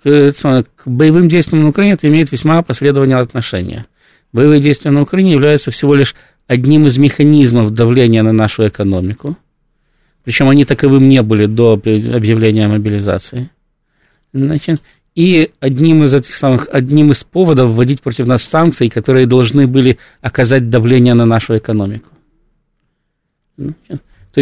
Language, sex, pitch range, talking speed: Russian, male, 115-145 Hz, 125 wpm